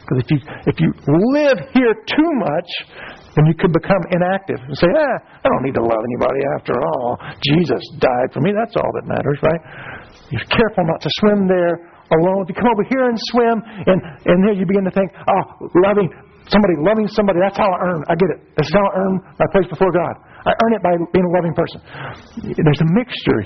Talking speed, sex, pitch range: 215 wpm, male, 145-205 Hz